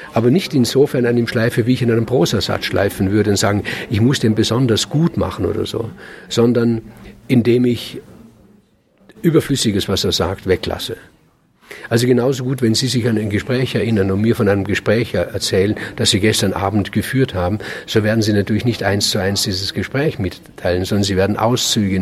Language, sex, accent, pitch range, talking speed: German, male, German, 100-125 Hz, 185 wpm